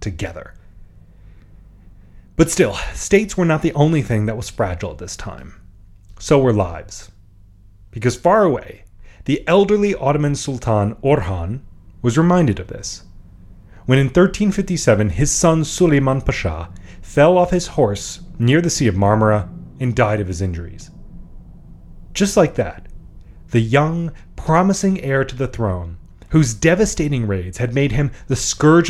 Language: English